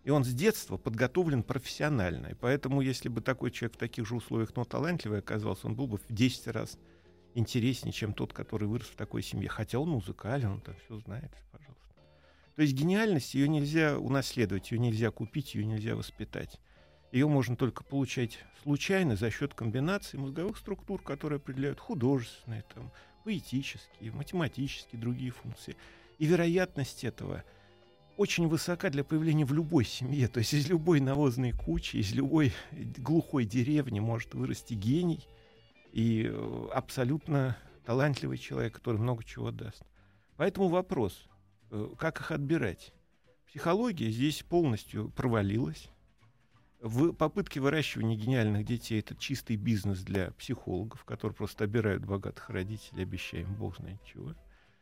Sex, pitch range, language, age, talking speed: male, 110-145 Hz, Russian, 40-59, 140 wpm